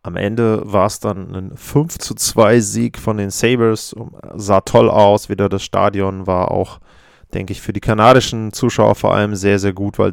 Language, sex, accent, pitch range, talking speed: German, male, German, 100-120 Hz, 195 wpm